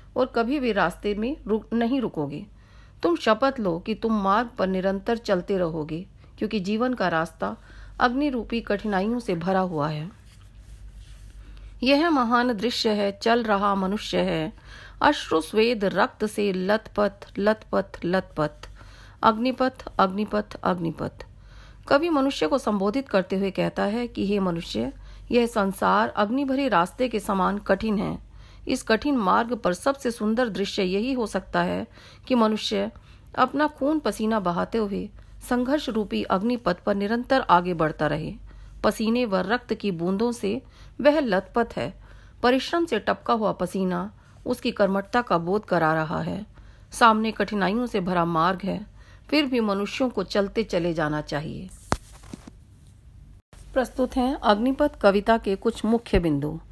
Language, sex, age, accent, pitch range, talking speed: Hindi, female, 40-59, native, 175-240 Hz, 145 wpm